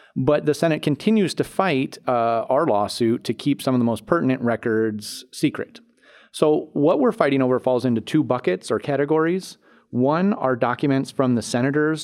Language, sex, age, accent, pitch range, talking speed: English, male, 30-49, American, 120-155 Hz, 175 wpm